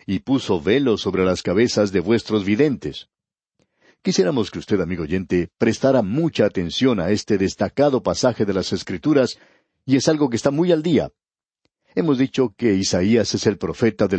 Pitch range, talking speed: 100-145 Hz, 170 wpm